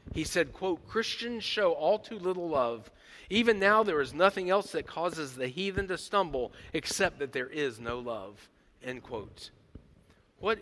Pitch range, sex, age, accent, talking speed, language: 130-180 Hz, male, 40-59, American, 170 wpm, English